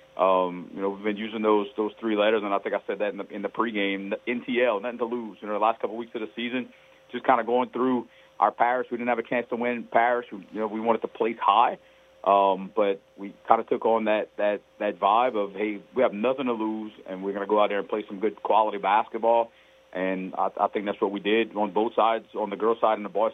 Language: English